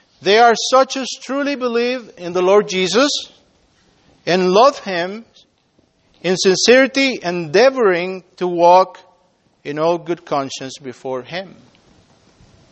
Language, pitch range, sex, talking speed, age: English, 170-225 Hz, male, 115 wpm, 50-69